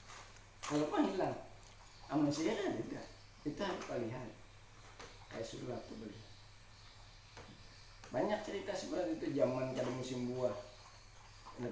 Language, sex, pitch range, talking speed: Indonesian, male, 100-115 Hz, 120 wpm